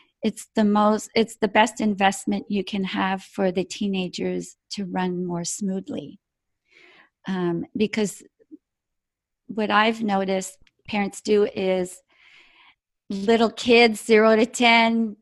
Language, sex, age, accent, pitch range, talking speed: English, female, 40-59, American, 195-230 Hz, 120 wpm